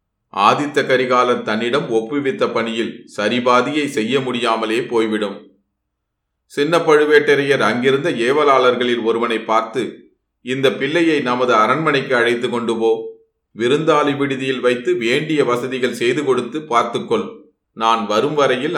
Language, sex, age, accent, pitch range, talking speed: Tamil, male, 30-49, native, 110-135 Hz, 105 wpm